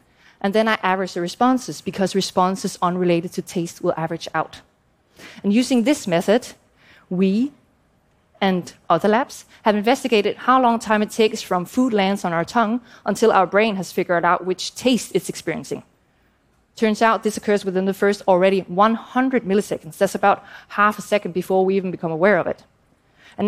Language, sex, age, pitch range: Japanese, female, 20-39, 185-230 Hz